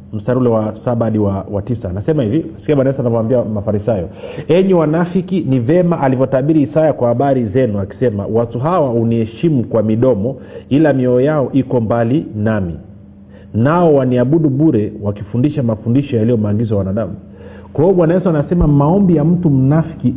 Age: 40-59